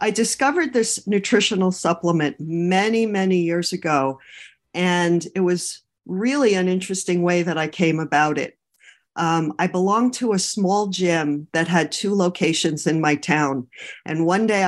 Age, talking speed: 50-69, 155 wpm